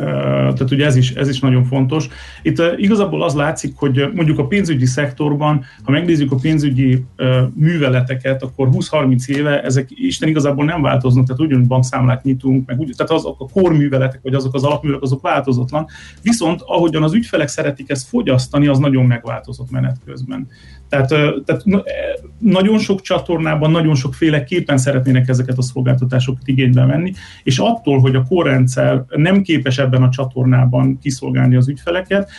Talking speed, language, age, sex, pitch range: 155 wpm, Hungarian, 30-49, male, 130-160 Hz